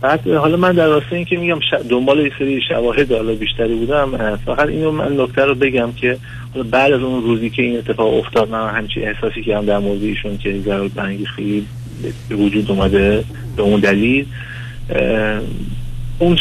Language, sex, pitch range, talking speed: Persian, male, 110-130 Hz, 170 wpm